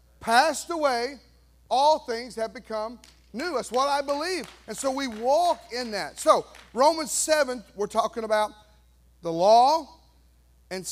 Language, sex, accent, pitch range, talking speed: English, male, American, 140-215 Hz, 145 wpm